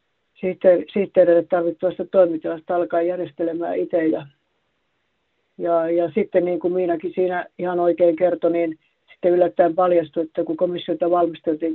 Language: Finnish